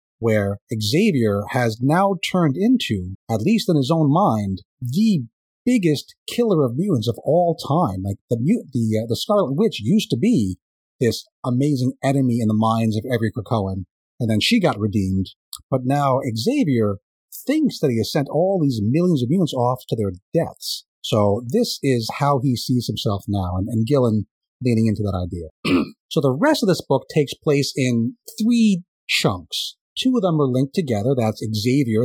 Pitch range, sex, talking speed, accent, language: 110-170 Hz, male, 180 wpm, American, English